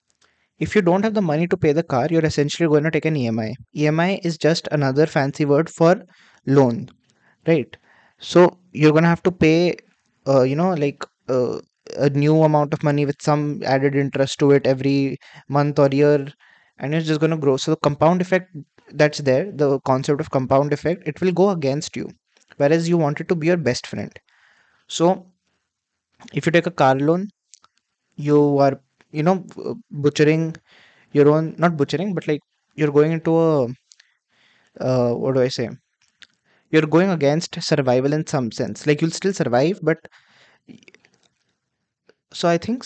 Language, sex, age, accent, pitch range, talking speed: English, male, 20-39, Indian, 140-170 Hz, 175 wpm